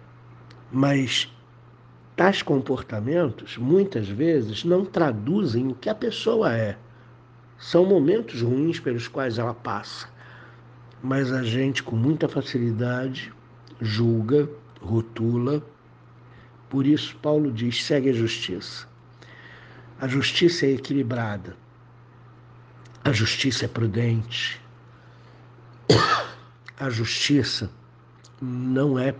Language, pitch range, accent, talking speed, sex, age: Portuguese, 120-140 Hz, Brazilian, 95 wpm, male, 60-79